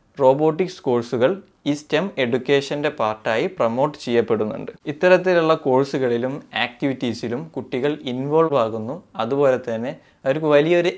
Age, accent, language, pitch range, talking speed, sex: 20-39, native, Malayalam, 120-145 Hz, 100 wpm, male